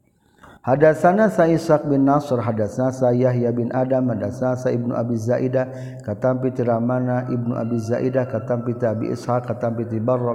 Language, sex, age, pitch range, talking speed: Indonesian, male, 50-69, 120-135 Hz, 145 wpm